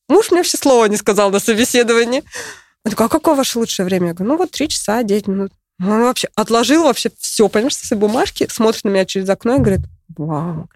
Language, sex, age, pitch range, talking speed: Russian, female, 20-39, 190-260 Hz, 225 wpm